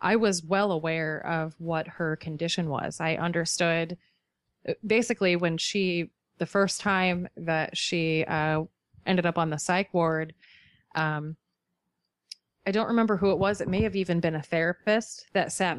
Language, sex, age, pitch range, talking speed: English, female, 30-49, 165-185 Hz, 160 wpm